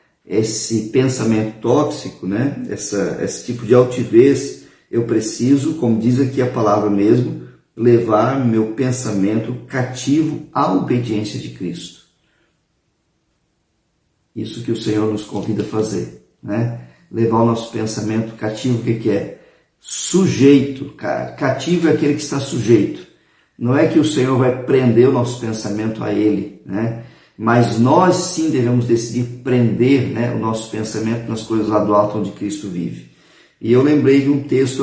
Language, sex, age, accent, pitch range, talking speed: Portuguese, male, 50-69, Brazilian, 110-130 Hz, 150 wpm